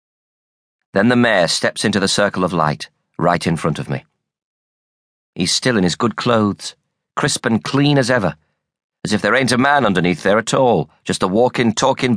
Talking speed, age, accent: 190 wpm, 40-59, British